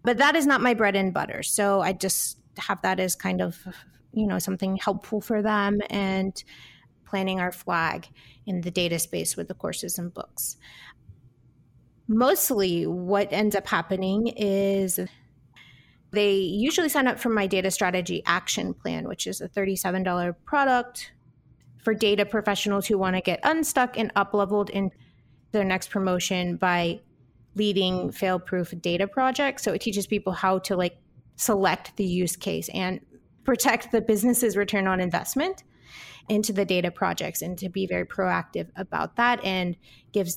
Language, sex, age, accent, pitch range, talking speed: English, female, 30-49, American, 180-215 Hz, 160 wpm